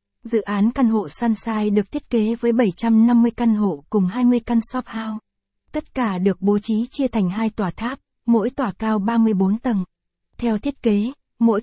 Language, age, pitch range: Vietnamese, 20-39, 210-240 Hz